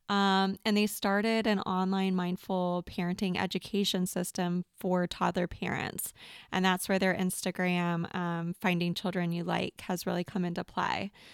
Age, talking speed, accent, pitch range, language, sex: 20-39, 150 wpm, American, 185-210 Hz, English, female